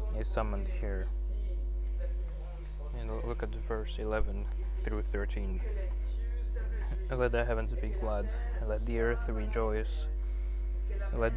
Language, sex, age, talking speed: French, male, 20-39, 110 wpm